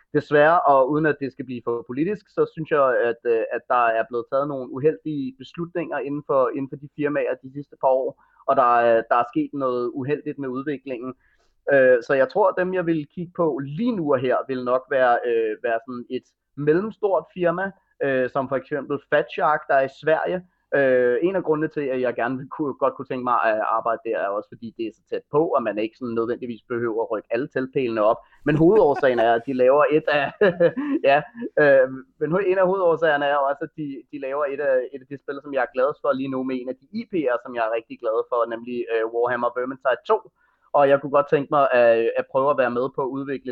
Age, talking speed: 30-49, 230 wpm